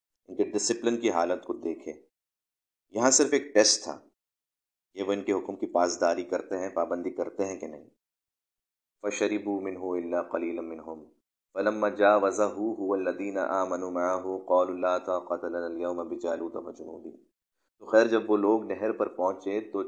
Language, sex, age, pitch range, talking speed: Urdu, male, 30-49, 90-105 Hz, 170 wpm